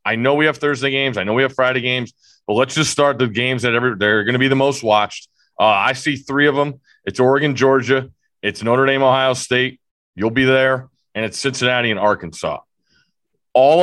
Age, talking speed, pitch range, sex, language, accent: 30-49, 215 wpm, 110-140 Hz, male, English, American